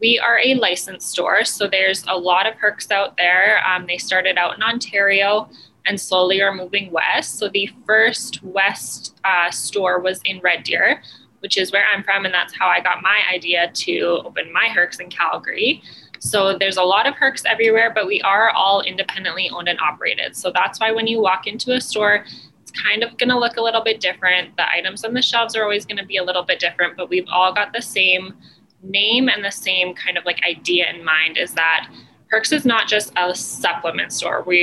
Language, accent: English, American